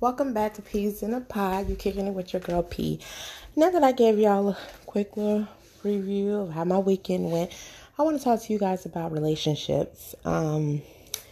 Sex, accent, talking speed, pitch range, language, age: female, American, 200 wpm, 155-195 Hz, English, 20-39